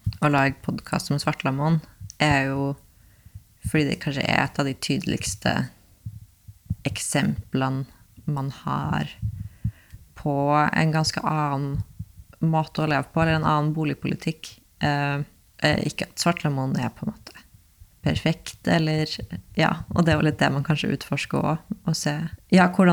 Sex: female